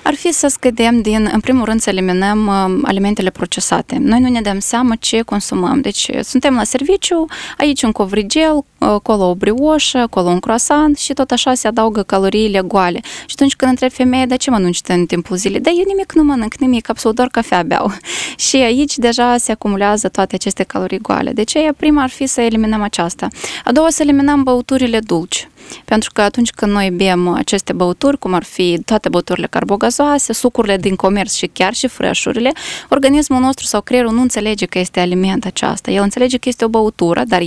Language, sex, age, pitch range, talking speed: Romanian, female, 20-39, 200-265 Hz, 200 wpm